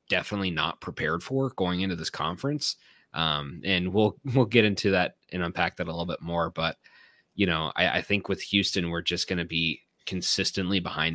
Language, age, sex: English, 20-39, male